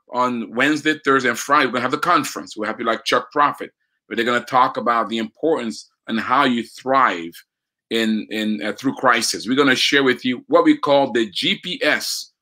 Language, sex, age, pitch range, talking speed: English, male, 30-49, 110-135 Hz, 205 wpm